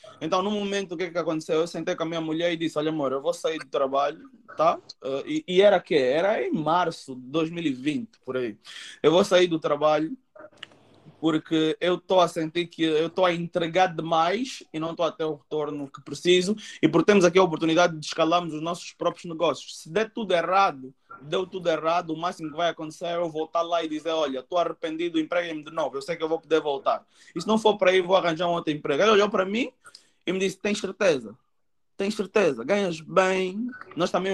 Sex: male